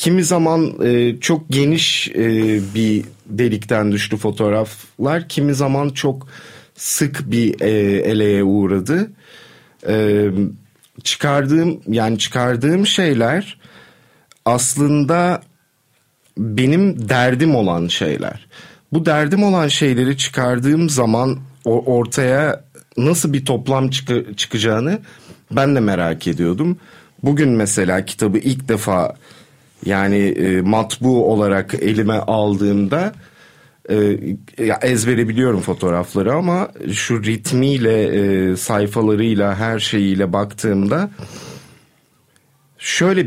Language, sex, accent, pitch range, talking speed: Turkish, male, native, 105-145 Hz, 90 wpm